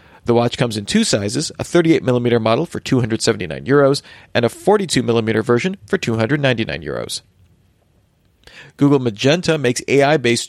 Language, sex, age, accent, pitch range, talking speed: English, male, 40-59, American, 115-150 Hz, 135 wpm